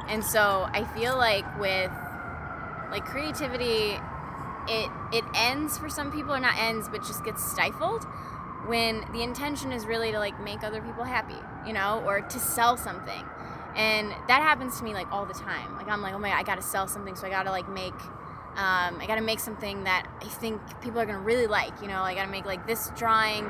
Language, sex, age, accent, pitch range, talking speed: English, female, 20-39, American, 205-255 Hz, 210 wpm